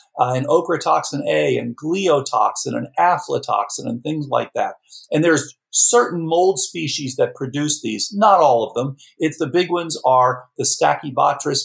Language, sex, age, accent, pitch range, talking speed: English, male, 50-69, American, 130-175 Hz, 160 wpm